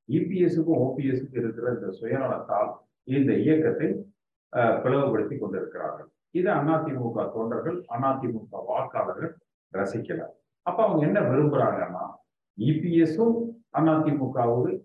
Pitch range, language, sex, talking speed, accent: 120-165 Hz, Tamil, male, 85 wpm, native